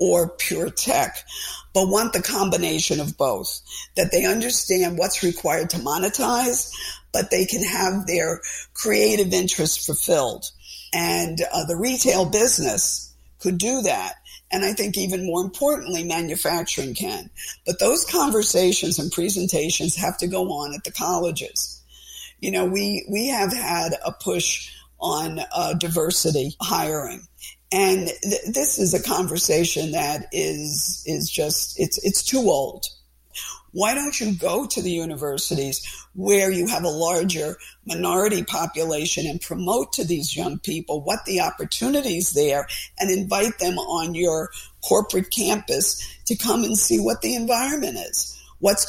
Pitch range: 165-205 Hz